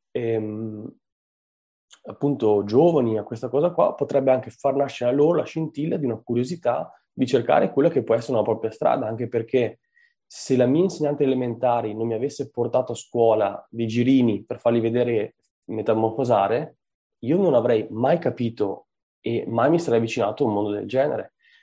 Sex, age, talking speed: male, 20-39, 170 wpm